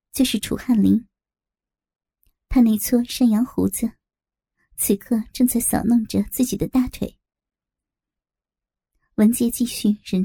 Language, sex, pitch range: Chinese, male, 210-250 Hz